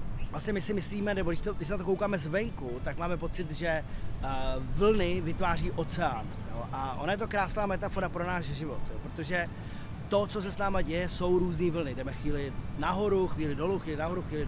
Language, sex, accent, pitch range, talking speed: Czech, male, native, 145-185 Hz, 200 wpm